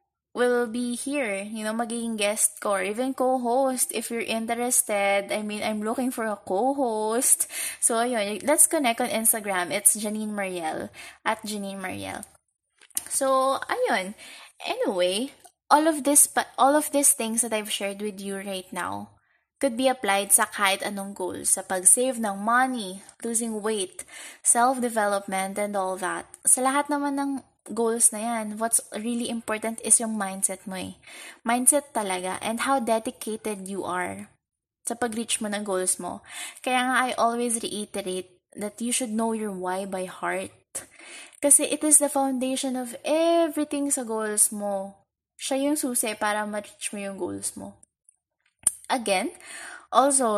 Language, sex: English, female